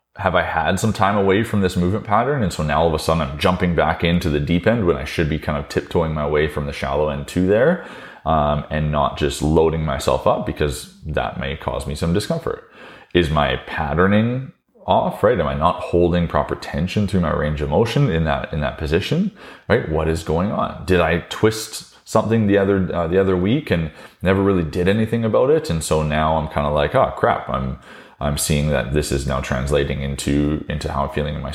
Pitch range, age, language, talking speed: 75-90 Hz, 30-49, English, 230 wpm